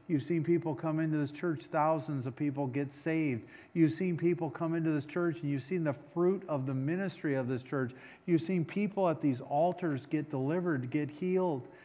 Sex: male